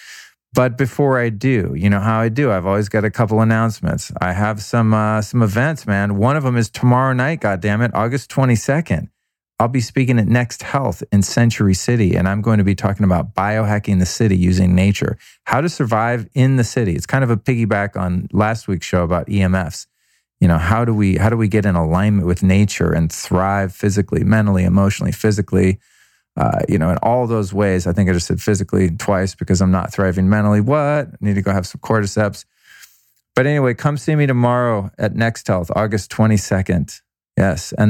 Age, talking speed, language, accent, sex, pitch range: 40-59, 205 wpm, English, American, male, 95-115 Hz